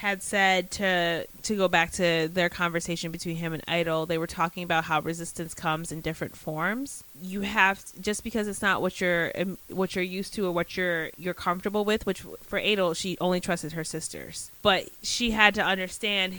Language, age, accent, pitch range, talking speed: English, 30-49, American, 165-190 Hz, 200 wpm